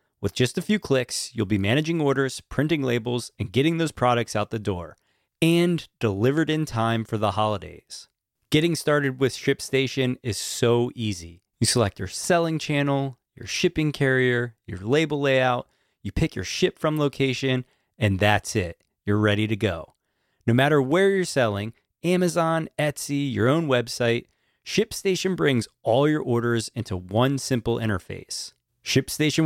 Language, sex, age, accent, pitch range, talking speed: English, male, 30-49, American, 115-160 Hz, 155 wpm